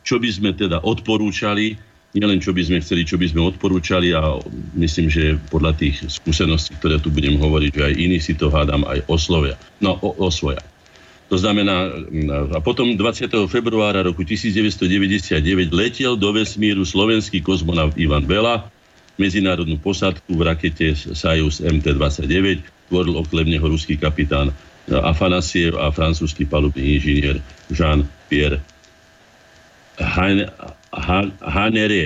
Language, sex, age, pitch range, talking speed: Slovak, male, 50-69, 75-95 Hz, 130 wpm